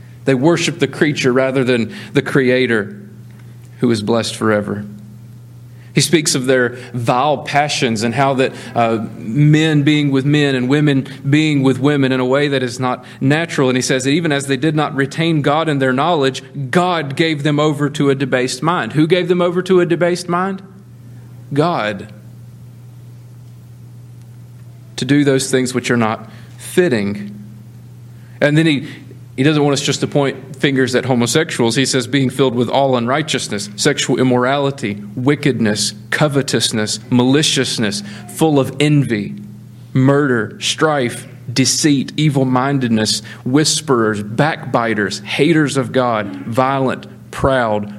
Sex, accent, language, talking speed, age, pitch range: male, American, English, 145 wpm, 40-59, 120-145 Hz